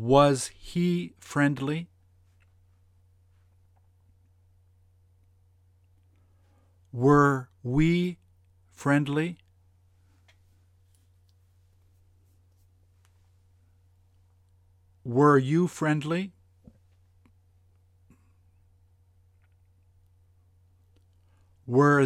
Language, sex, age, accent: English, male, 50-69, American